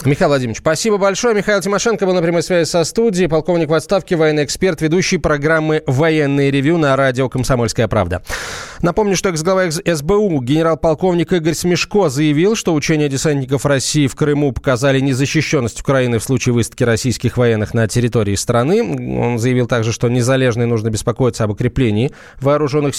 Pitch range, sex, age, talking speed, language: 125-170 Hz, male, 20-39, 155 wpm, Russian